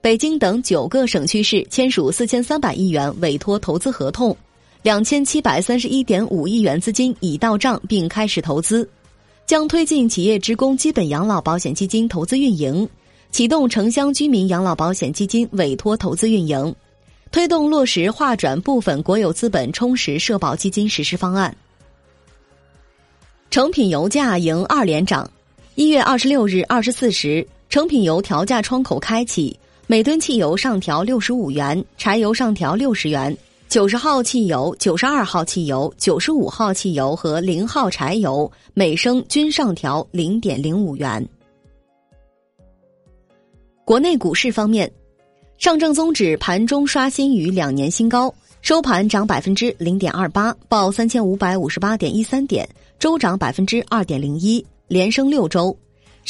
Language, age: Chinese, 20-39